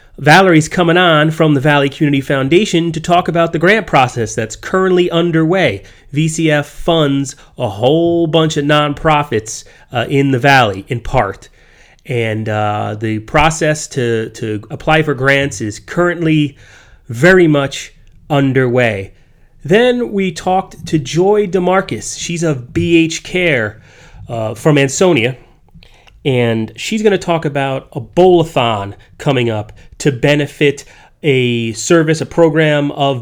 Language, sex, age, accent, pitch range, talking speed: English, male, 30-49, American, 120-165 Hz, 135 wpm